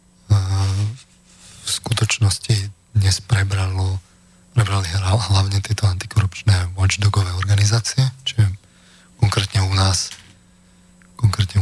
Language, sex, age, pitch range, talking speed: Slovak, male, 20-39, 90-110 Hz, 75 wpm